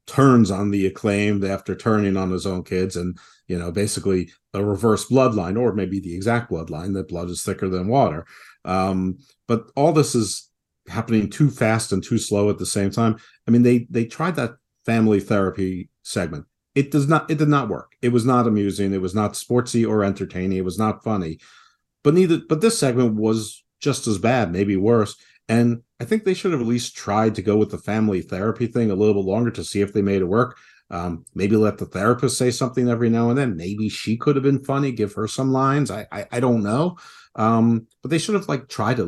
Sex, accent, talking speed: male, American, 225 wpm